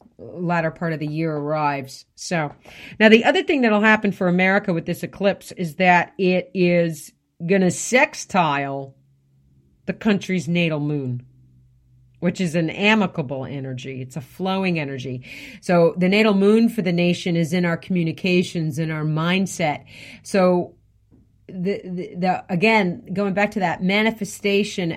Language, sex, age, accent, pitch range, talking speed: English, female, 40-59, American, 140-185 Hz, 150 wpm